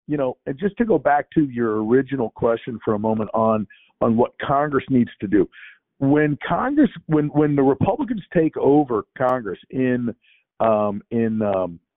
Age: 50-69